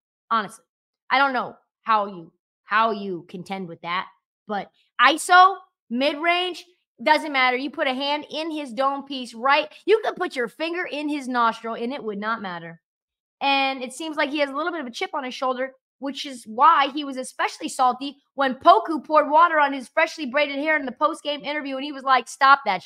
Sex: female